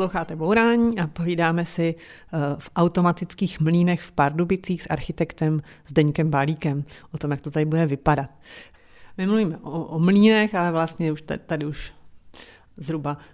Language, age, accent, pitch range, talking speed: Czech, 40-59, native, 150-170 Hz, 140 wpm